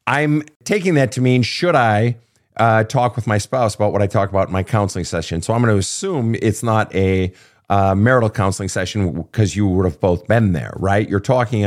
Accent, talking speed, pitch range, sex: American, 220 wpm, 100-120 Hz, male